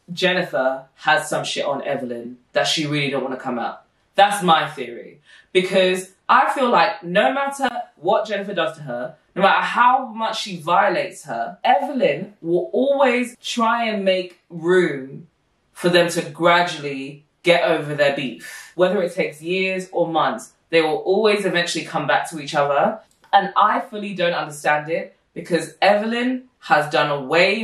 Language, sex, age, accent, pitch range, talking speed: English, female, 20-39, British, 160-210 Hz, 165 wpm